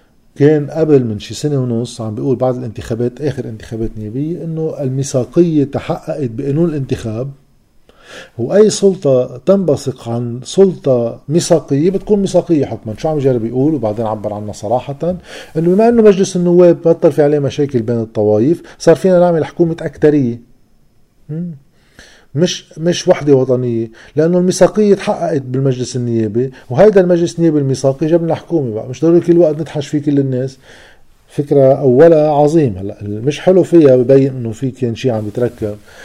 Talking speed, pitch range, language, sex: 150 wpm, 120-160 Hz, Arabic, male